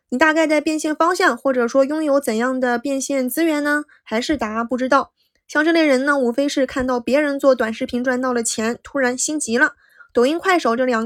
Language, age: Chinese, 20-39